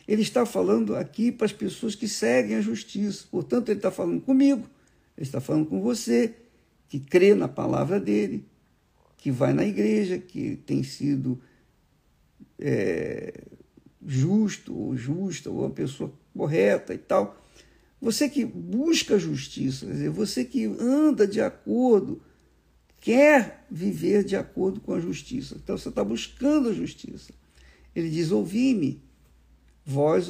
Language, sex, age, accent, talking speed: Portuguese, male, 50-69, Brazilian, 135 wpm